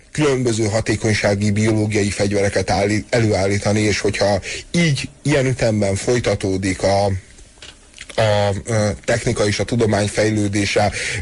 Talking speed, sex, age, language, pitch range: 100 wpm, male, 30-49, Hungarian, 105-120 Hz